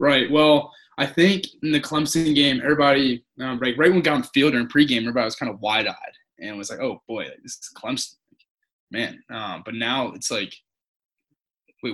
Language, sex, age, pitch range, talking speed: English, male, 10-29, 115-135 Hz, 200 wpm